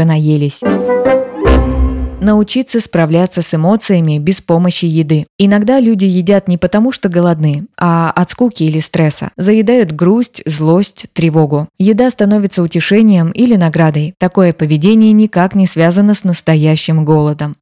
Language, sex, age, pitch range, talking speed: Russian, female, 20-39, 160-205 Hz, 125 wpm